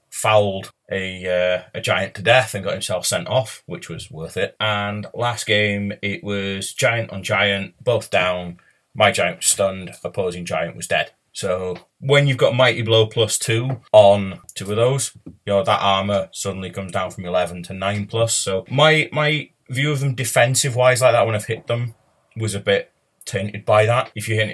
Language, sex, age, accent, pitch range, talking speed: English, male, 30-49, British, 100-130 Hz, 200 wpm